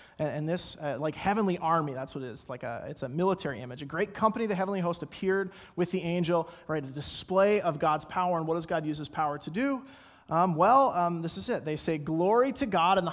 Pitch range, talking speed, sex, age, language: 150-190 Hz, 240 wpm, male, 30-49, English